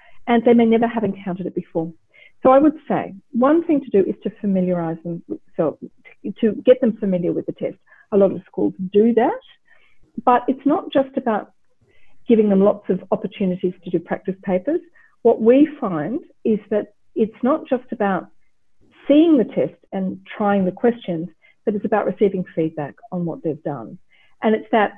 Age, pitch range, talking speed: 40-59, 180-240 Hz, 185 wpm